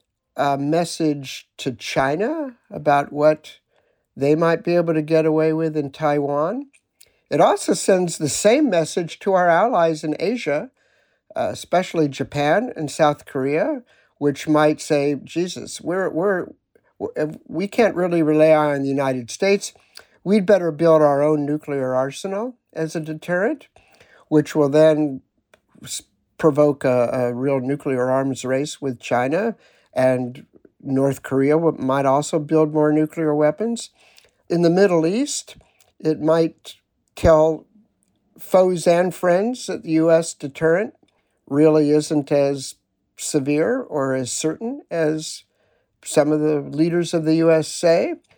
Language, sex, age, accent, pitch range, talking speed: English, male, 60-79, American, 140-170 Hz, 135 wpm